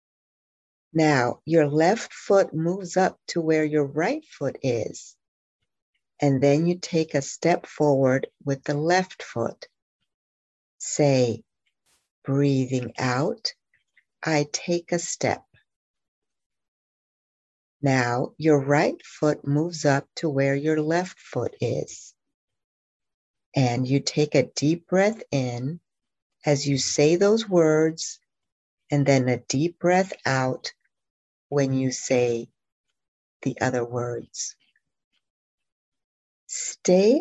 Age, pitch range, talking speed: 60-79, 130-165 Hz, 110 wpm